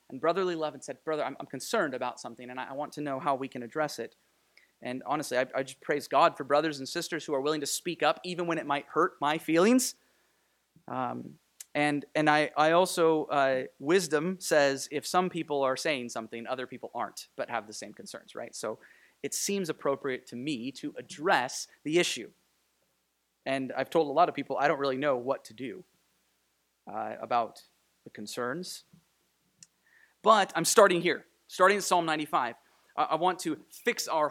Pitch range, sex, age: 135-180 Hz, male, 30-49